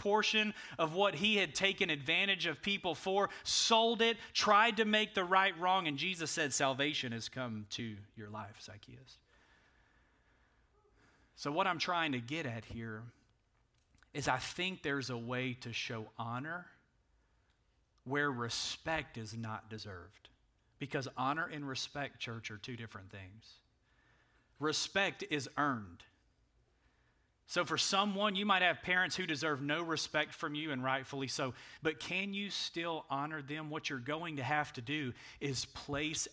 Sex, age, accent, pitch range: male, 30-49, American, 125-165 Hz